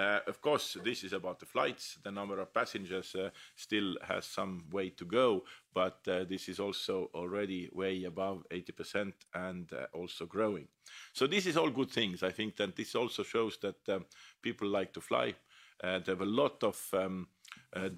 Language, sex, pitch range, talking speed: English, male, 95-105 Hz, 195 wpm